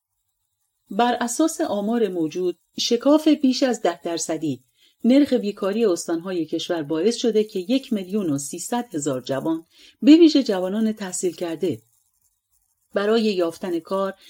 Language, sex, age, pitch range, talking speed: Persian, female, 40-59, 165-230 Hz, 125 wpm